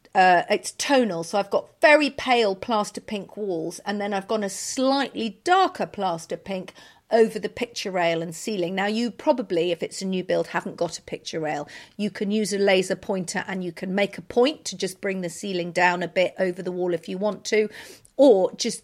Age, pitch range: 50-69, 190-240 Hz